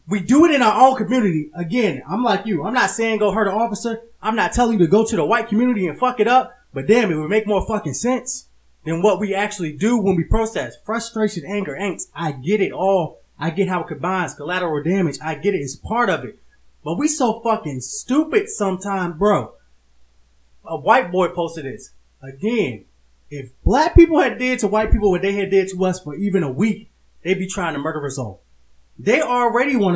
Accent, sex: American, male